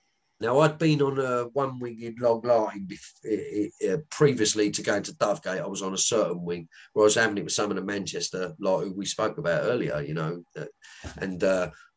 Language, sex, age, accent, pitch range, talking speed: English, male, 40-59, British, 105-155 Hz, 220 wpm